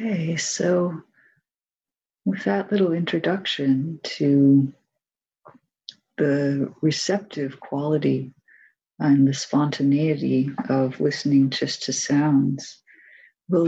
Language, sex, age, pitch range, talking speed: English, female, 40-59, 135-175 Hz, 85 wpm